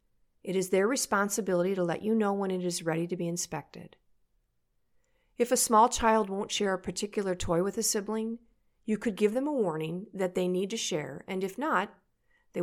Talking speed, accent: 200 wpm, American